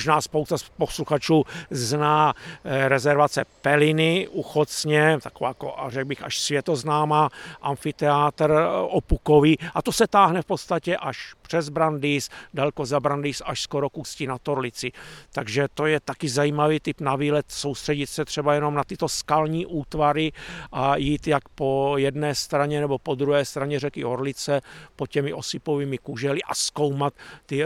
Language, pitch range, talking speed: Czech, 135-150 Hz, 150 wpm